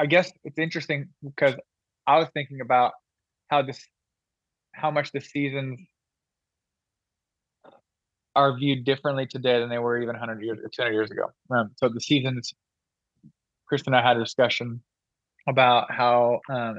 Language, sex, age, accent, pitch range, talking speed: English, male, 20-39, American, 115-135 Hz, 155 wpm